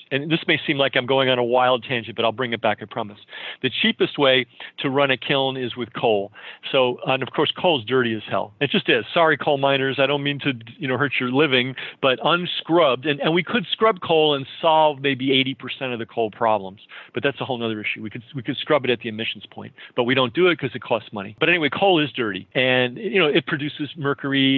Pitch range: 120-150 Hz